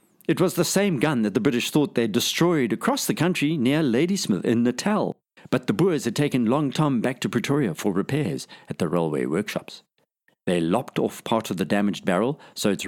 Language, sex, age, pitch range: English, male, 50-69, 105-155 Hz